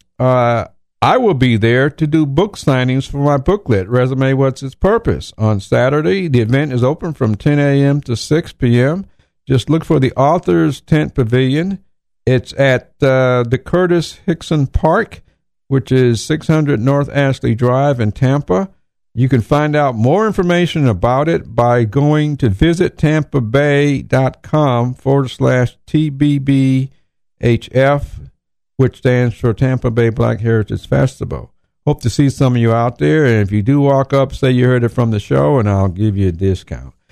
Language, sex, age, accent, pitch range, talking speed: English, male, 60-79, American, 120-155 Hz, 160 wpm